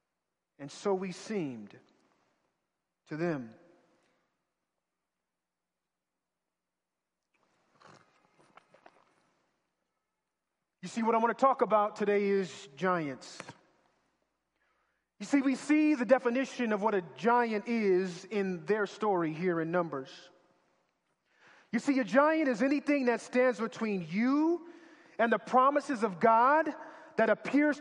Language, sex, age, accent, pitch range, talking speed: English, male, 40-59, American, 205-280 Hz, 110 wpm